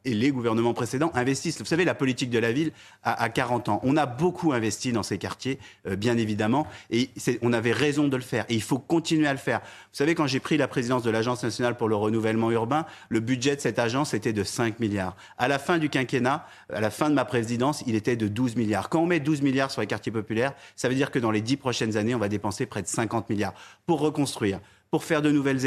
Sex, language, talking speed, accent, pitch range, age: male, French, 260 wpm, French, 115-140 Hz, 30-49